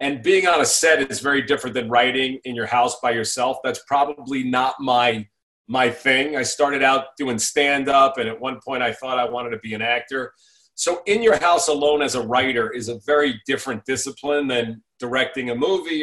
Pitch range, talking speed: 120-145 Hz, 205 wpm